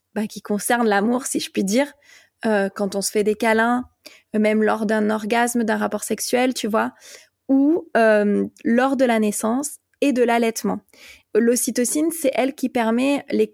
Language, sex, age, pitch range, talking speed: French, female, 20-39, 215-255 Hz, 175 wpm